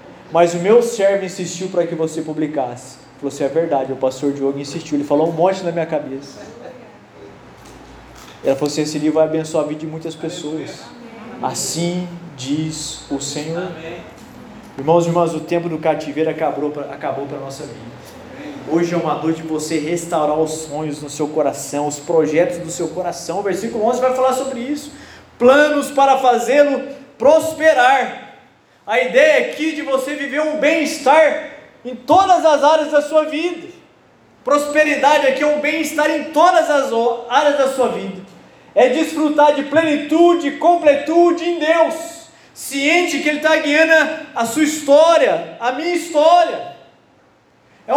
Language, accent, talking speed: Portuguese, Brazilian, 160 wpm